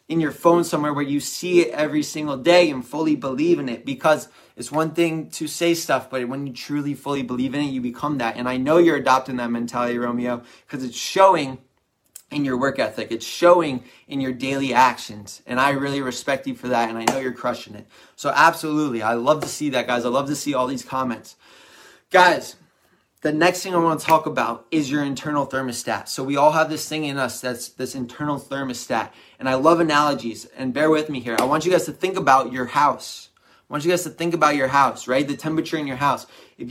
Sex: male